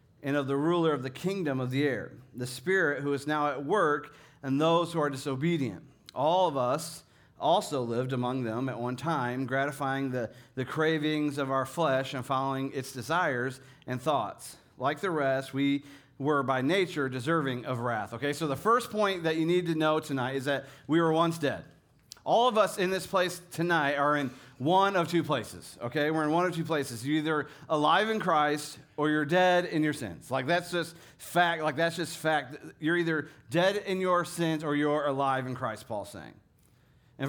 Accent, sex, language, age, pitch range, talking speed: American, male, English, 40-59, 135-170 Hz, 200 wpm